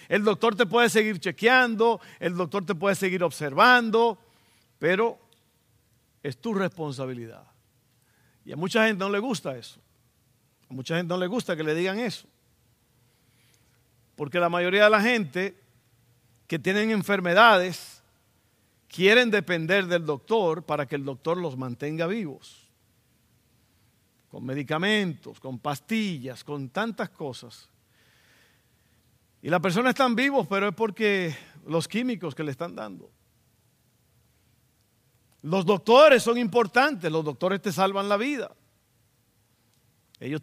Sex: male